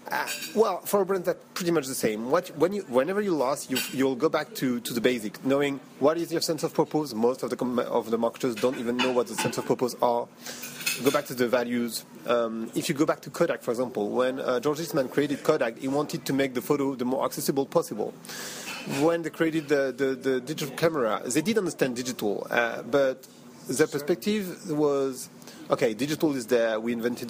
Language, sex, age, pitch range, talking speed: English, male, 30-49, 120-155 Hz, 220 wpm